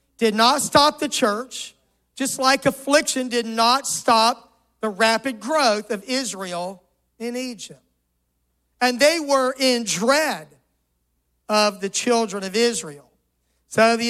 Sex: male